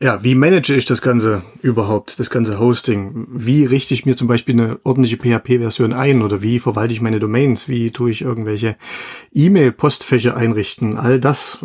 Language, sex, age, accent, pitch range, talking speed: German, male, 30-49, German, 115-130 Hz, 175 wpm